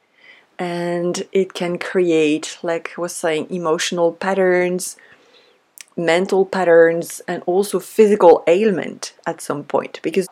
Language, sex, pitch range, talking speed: English, female, 180-245 Hz, 115 wpm